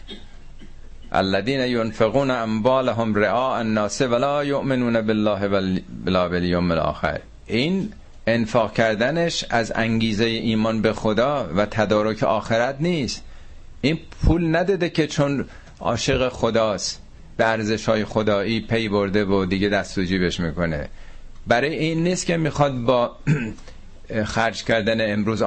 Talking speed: 115 wpm